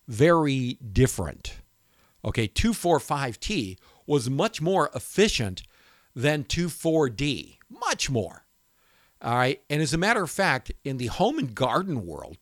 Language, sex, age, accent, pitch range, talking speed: English, male, 50-69, American, 120-165 Hz, 125 wpm